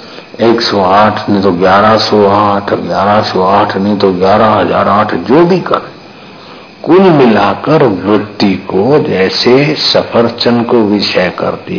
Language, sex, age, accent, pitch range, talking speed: Hindi, male, 60-79, native, 100-120 Hz, 100 wpm